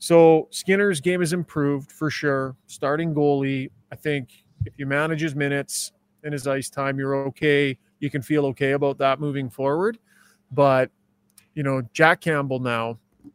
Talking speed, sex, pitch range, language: 160 wpm, male, 135-165 Hz, English